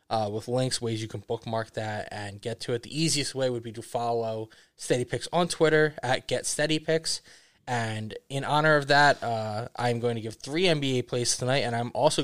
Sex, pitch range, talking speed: male, 115-140 Hz, 215 wpm